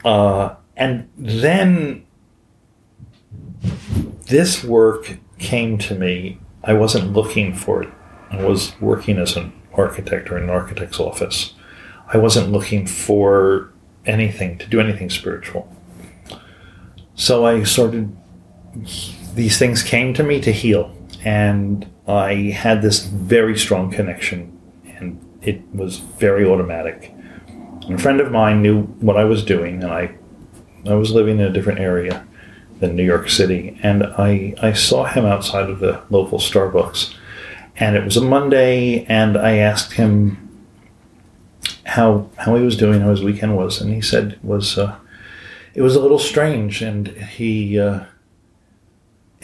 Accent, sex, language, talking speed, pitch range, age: American, male, Danish, 145 wpm, 95-110 Hz, 40-59